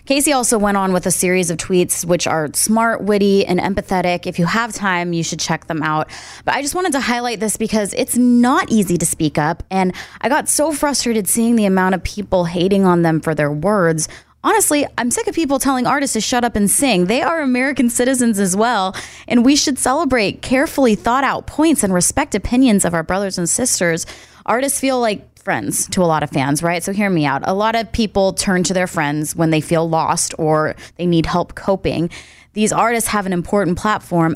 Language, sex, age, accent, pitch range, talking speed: English, female, 20-39, American, 170-230 Hz, 220 wpm